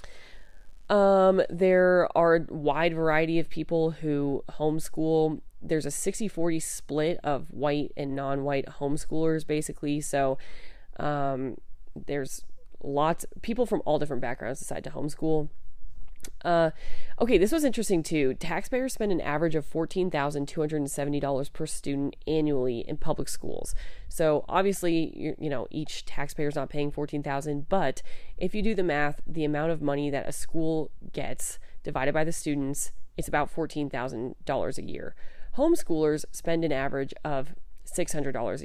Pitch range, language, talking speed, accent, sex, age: 140-165 Hz, English, 140 wpm, American, female, 20-39